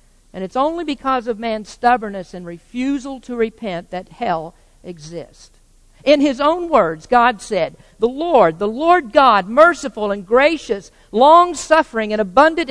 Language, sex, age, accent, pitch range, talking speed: English, female, 50-69, American, 185-265 Hz, 145 wpm